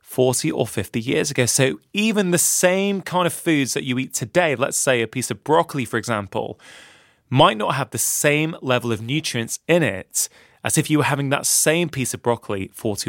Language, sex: English, male